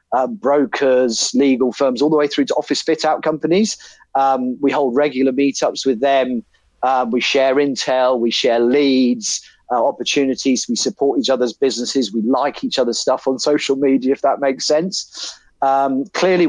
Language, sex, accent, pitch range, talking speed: English, male, British, 130-150 Hz, 170 wpm